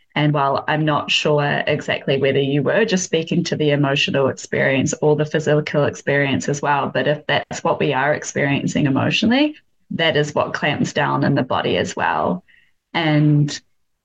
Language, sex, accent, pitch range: English, female, Australian, 155-185 Hz